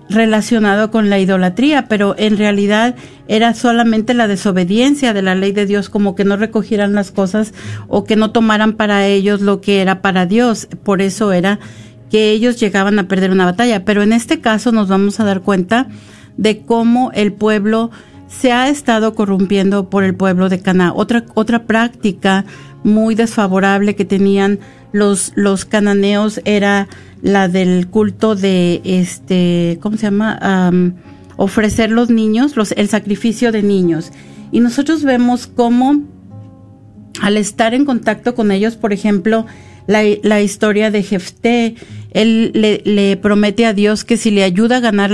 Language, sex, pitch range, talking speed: Spanish, female, 195-220 Hz, 160 wpm